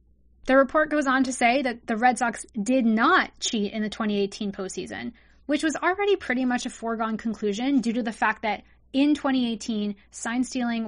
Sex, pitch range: female, 215-265 Hz